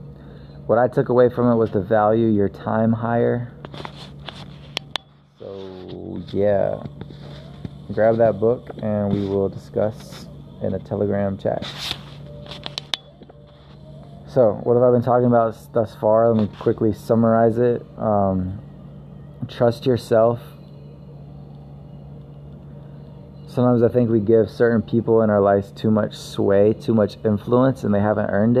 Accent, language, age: American, English, 20-39